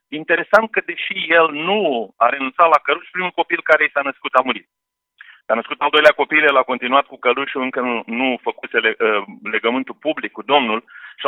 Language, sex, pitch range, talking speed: Romanian, male, 140-195 Hz, 185 wpm